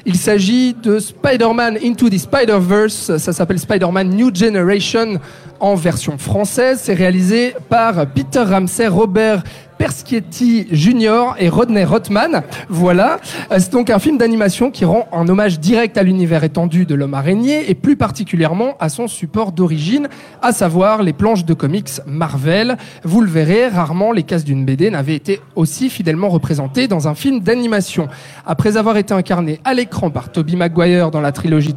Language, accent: French, French